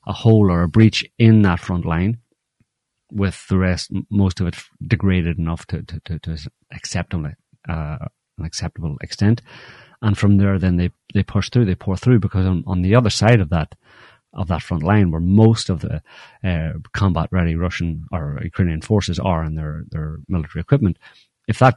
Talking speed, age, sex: 185 wpm, 30-49, male